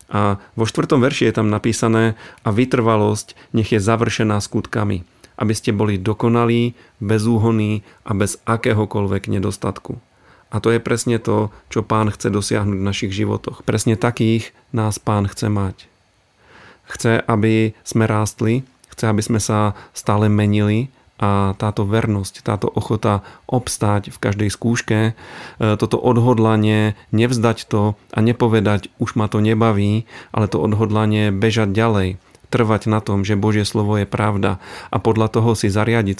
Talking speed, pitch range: 145 wpm, 100-115 Hz